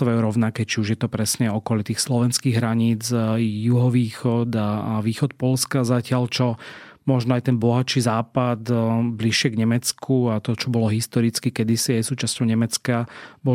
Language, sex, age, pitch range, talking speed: Slovak, male, 30-49, 115-125 Hz, 150 wpm